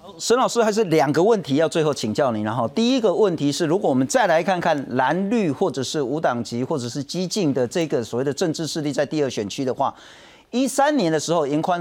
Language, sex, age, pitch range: Chinese, male, 40-59, 135-205 Hz